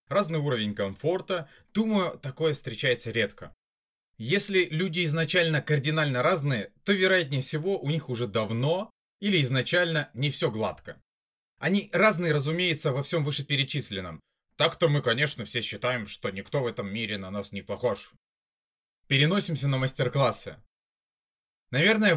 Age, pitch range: 20-39, 125-170 Hz